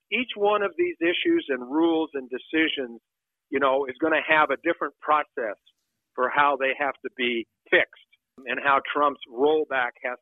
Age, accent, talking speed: 50-69, American, 175 wpm